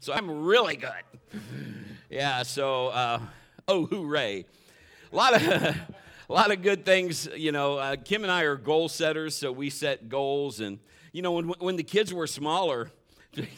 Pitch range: 110-150 Hz